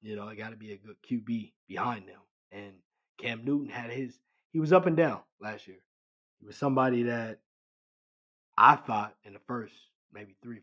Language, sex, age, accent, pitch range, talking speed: English, male, 20-39, American, 110-145 Hz, 190 wpm